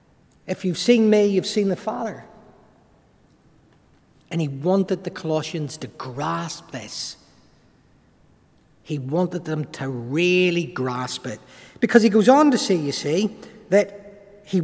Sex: male